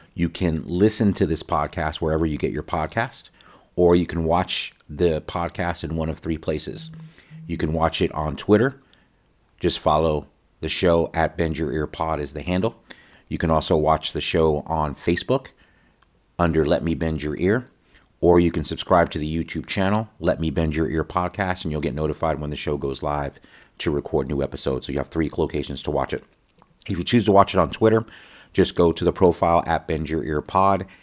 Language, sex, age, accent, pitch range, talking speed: English, male, 40-59, American, 75-90 Hz, 200 wpm